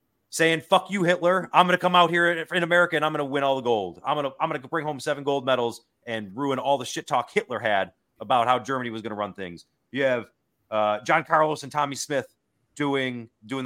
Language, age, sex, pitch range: English, 30-49, male, 105-155 Hz